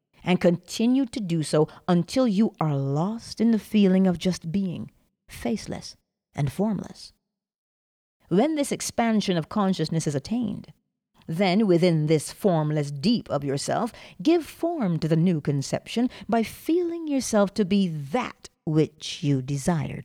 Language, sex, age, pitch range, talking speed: English, female, 40-59, 155-210 Hz, 140 wpm